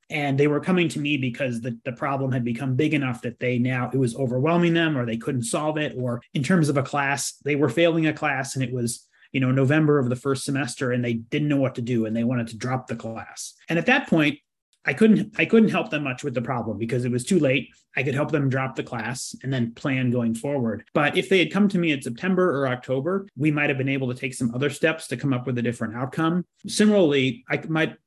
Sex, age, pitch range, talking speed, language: male, 30-49, 125-155 Hz, 265 wpm, English